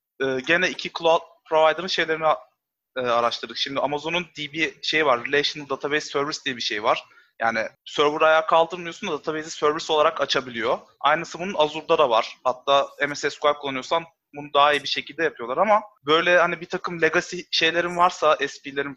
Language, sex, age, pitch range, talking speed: Turkish, male, 30-49, 140-165 Hz, 160 wpm